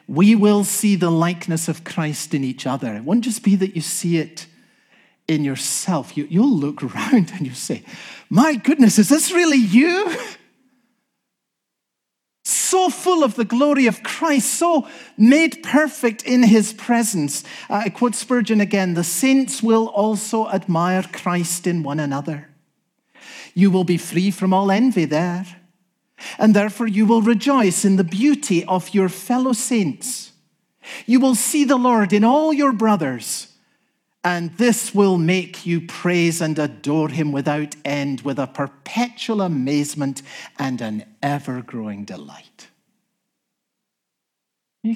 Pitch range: 170-245 Hz